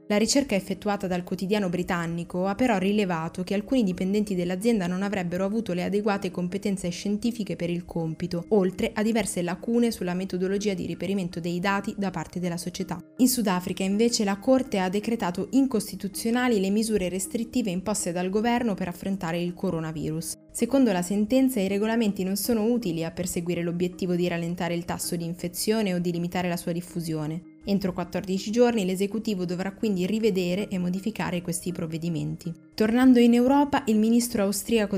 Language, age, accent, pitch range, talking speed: Italian, 20-39, native, 175-210 Hz, 165 wpm